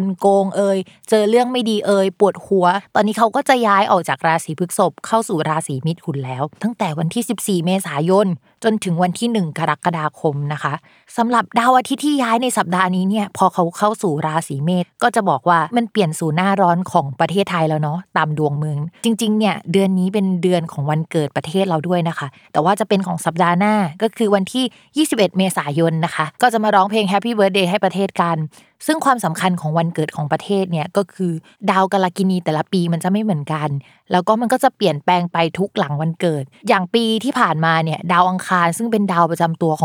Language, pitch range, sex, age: Thai, 165-215 Hz, female, 20-39